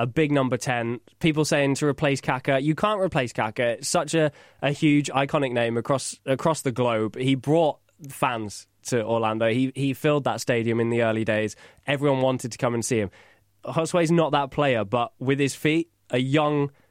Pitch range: 115-140 Hz